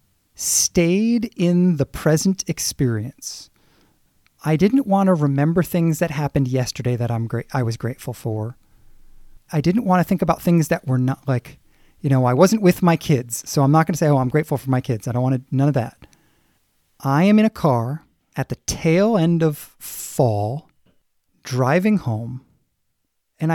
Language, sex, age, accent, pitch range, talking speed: English, male, 30-49, American, 130-175 Hz, 185 wpm